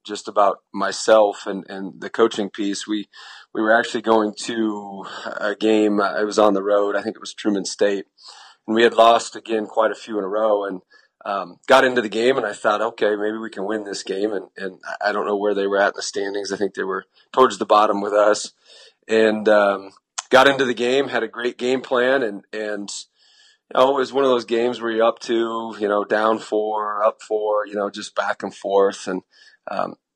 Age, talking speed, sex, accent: 30-49, 225 wpm, male, American